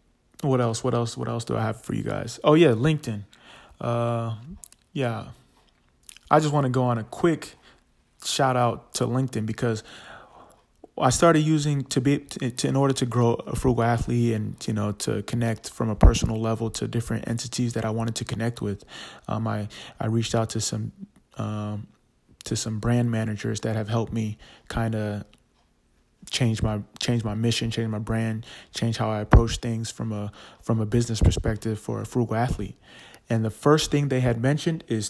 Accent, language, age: American, English, 20-39